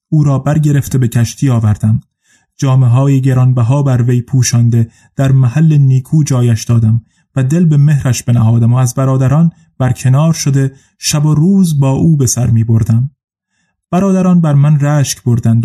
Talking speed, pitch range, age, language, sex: 155 wpm, 125-145 Hz, 30-49, Persian, male